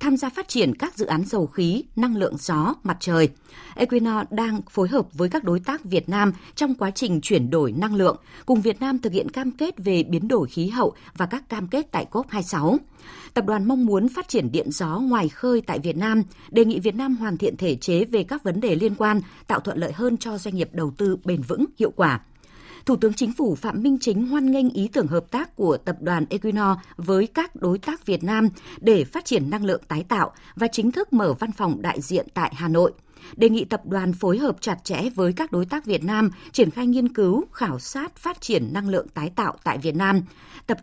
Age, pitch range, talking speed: 20-39, 180-245 Hz, 235 wpm